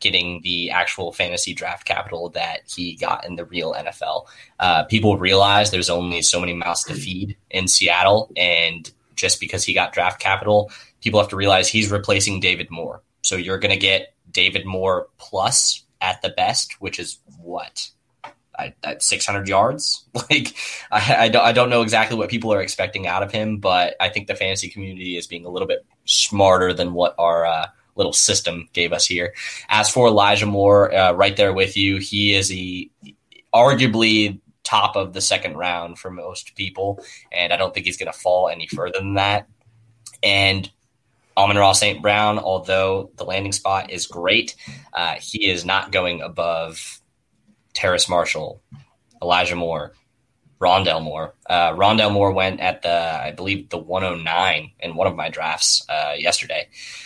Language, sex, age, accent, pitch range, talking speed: English, male, 10-29, American, 90-105 Hz, 180 wpm